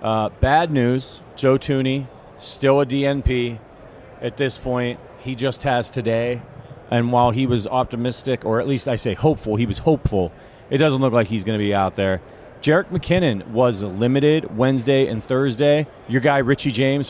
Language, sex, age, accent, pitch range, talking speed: English, male, 30-49, American, 110-135 Hz, 175 wpm